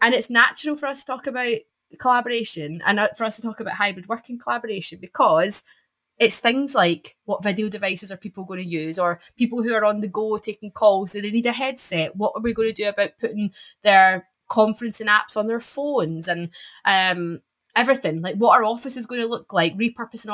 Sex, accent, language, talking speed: female, British, English, 205 wpm